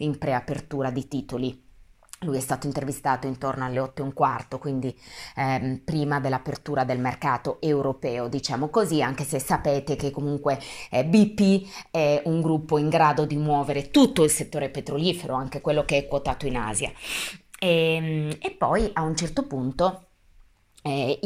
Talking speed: 160 wpm